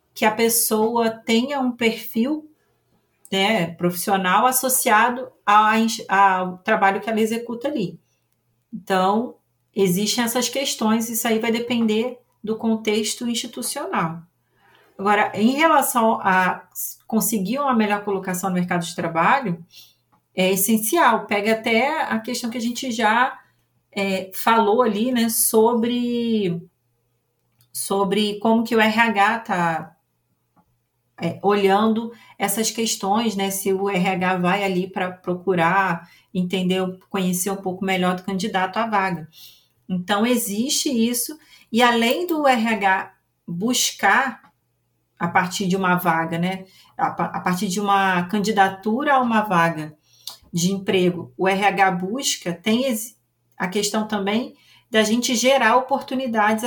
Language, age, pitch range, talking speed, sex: Portuguese, 40-59, 185-230 Hz, 120 wpm, female